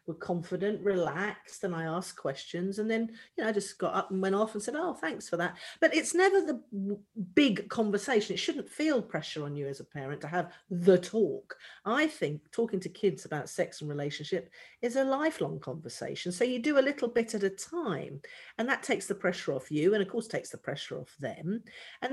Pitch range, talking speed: 165-245 Hz, 220 wpm